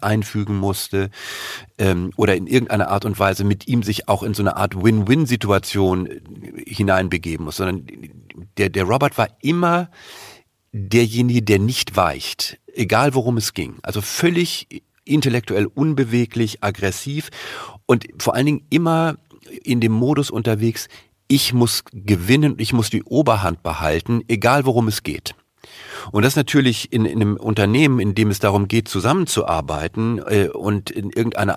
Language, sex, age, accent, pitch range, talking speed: German, male, 40-59, German, 100-125 Hz, 145 wpm